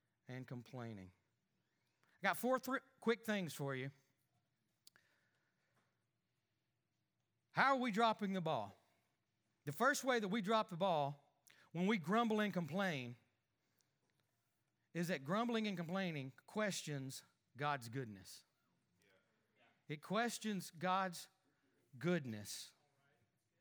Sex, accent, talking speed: male, American, 100 wpm